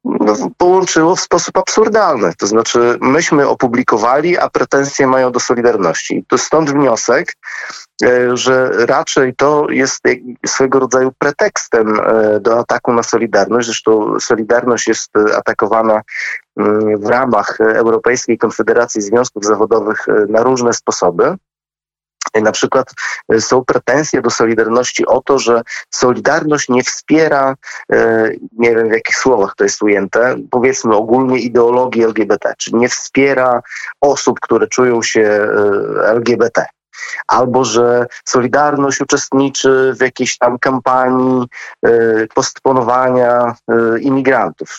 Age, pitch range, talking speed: 30-49, 110-135 Hz, 110 wpm